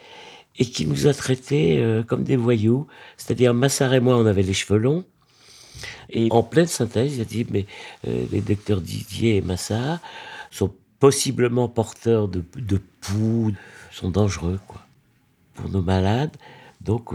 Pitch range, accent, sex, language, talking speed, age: 95-135 Hz, French, male, French, 160 wpm, 50-69